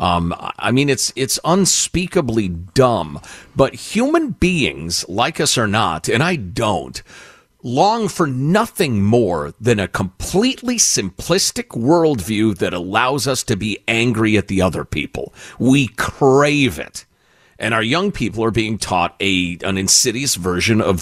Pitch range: 105-170 Hz